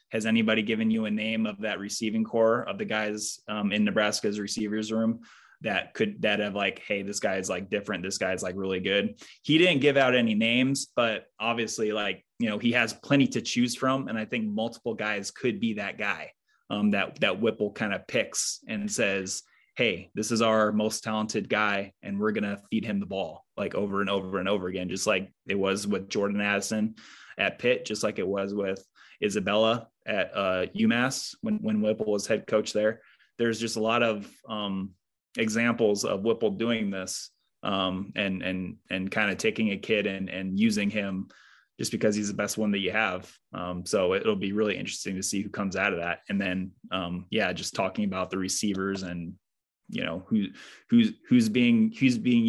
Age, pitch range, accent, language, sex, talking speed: 20-39, 100-115 Hz, American, English, male, 205 wpm